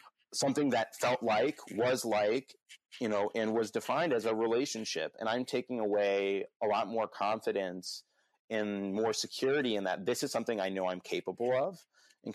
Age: 30-49